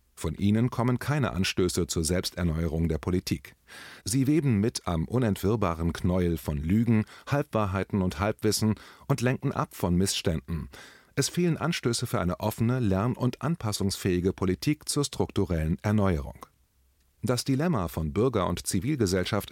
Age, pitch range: 30-49, 90-125 Hz